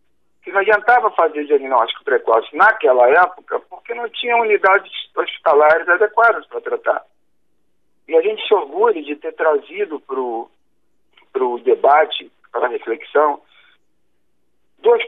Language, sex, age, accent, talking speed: Portuguese, male, 50-69, Brazilian, 125 wpm